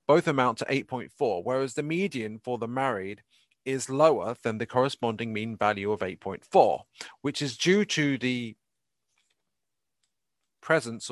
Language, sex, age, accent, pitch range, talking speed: English, male, 40-59, British, 110-150 Hz, 135 wpm